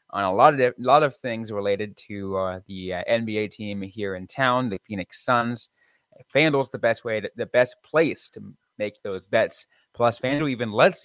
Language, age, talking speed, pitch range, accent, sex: English, 20-39, 200 wpm, 100-145 Hz, American, male